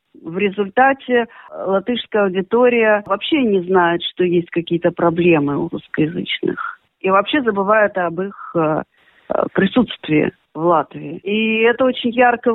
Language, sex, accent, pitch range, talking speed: Russian, female, native, 185-235 Hz, 120 wpm